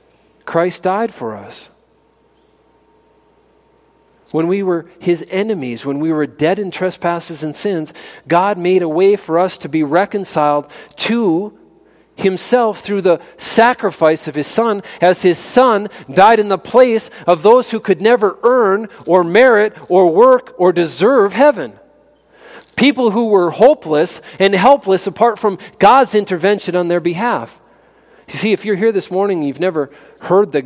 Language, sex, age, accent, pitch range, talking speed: English, male, 40-59, American, 165-225 Hz, 155 wpm